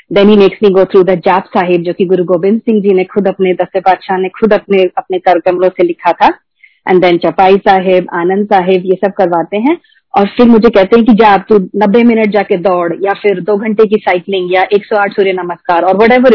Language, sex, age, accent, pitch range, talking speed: Hindi, female, 30-49, native, 185-220 Hz, 230 wpm